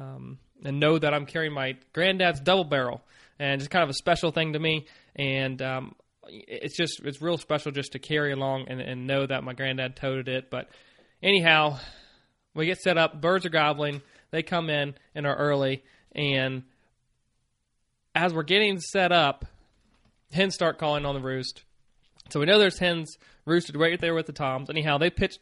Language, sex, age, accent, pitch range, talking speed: English, male, 20-39, American, 135-175 Hz, 185 wpm